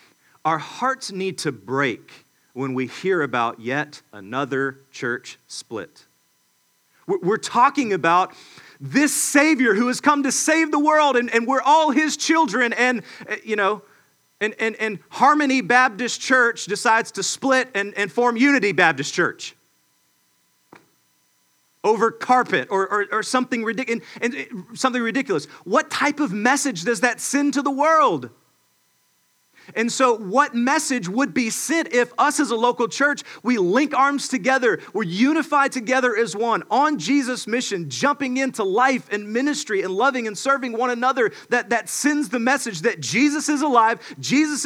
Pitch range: 190-275 Hz